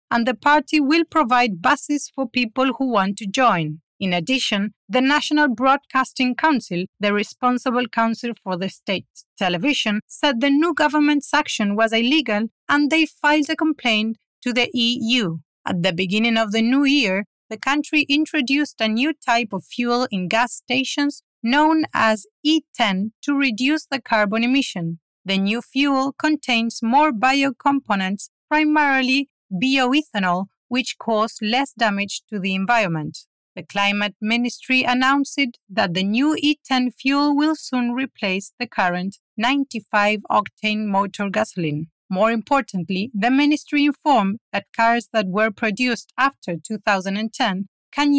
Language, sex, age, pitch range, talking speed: English, female, 40-59, 205-275 Hz, 140 wpm